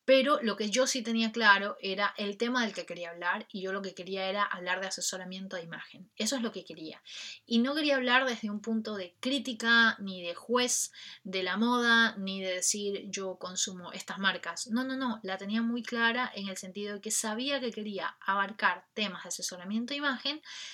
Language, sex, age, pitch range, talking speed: Spanish, female, 20-39, 190-235 Hz, 210 wpm